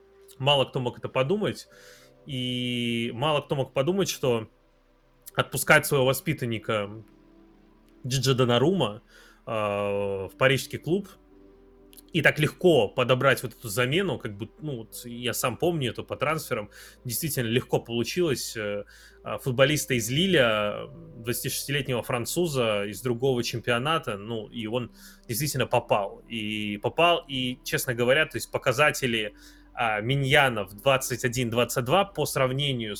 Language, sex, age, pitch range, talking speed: Russian, male, 20-39, 115-145 Hz, 120 wpm